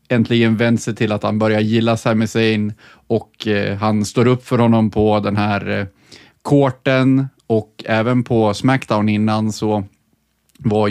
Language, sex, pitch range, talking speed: Swedish, male, 100-115 Hz, 160 wpm